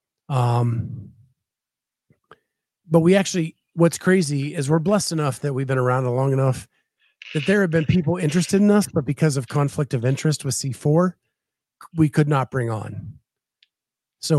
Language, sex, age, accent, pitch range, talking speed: English, male, 50-69, American, 120-155 Hz, 160 wpm